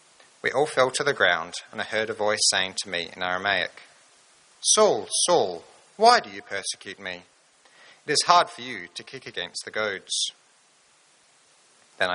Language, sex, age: English, male, 40-59